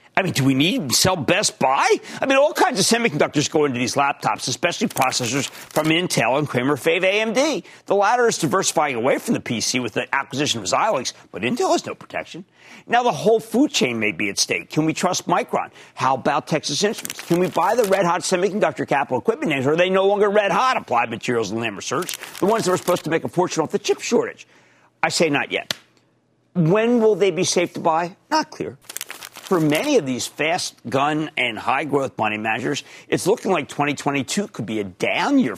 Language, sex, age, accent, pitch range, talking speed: English, male, 50-69, American, 140-210 Hz, 210 wpm